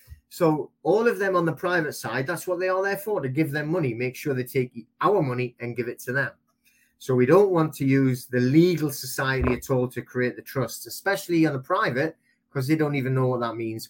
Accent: British